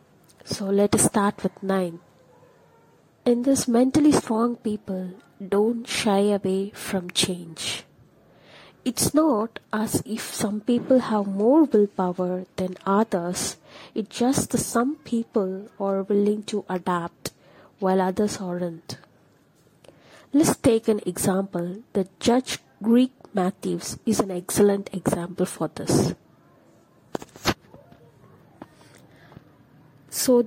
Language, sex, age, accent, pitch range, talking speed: English, female, 30-49, Indian, 185-235 Hz, 105 wpm